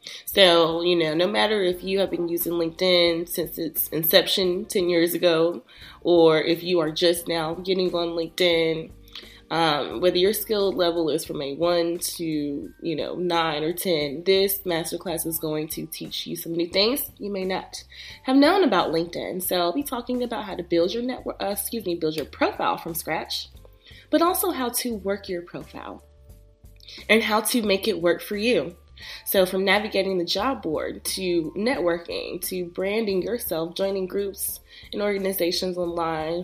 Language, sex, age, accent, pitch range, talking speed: English, female, 20-39, American, 170-200 Hz, 175 wpm